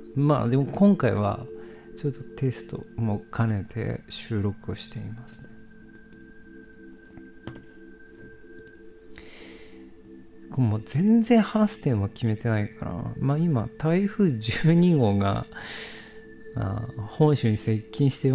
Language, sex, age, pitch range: Japanese, male, 40-59, 110-170 Hz